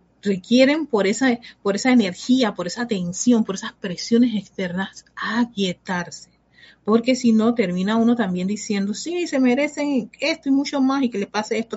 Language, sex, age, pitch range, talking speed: Spanish, female, 50-69, 200-260 Hz, 170 wpm